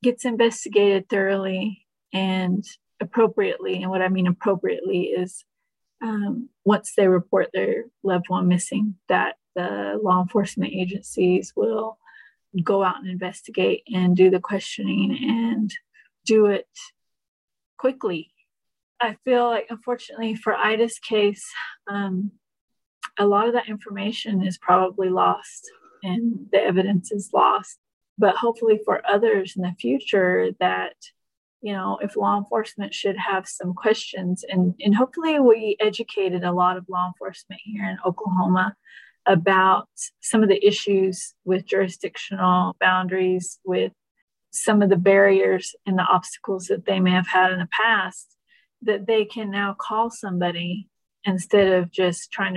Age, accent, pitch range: 30-49, American, 185-220 Hz